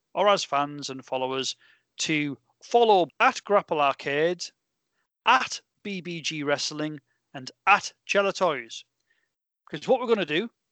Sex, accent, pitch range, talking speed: male, British, 145-215 Hz, 130 wpm